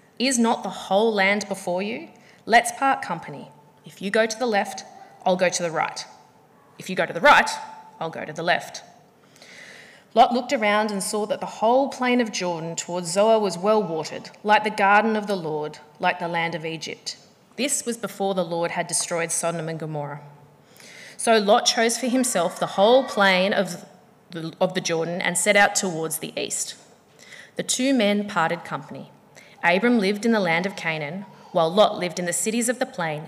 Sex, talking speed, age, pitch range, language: female, 195 wpm, 30-49, 170-230 Hz, English